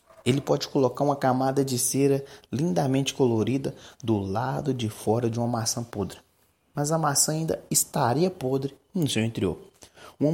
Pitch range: 110-140 Hz